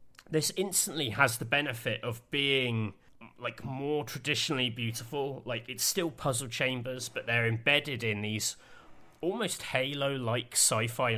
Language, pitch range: English, 105-130 Hz